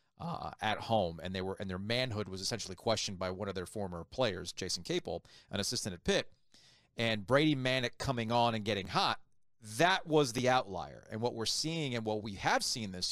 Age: 40-59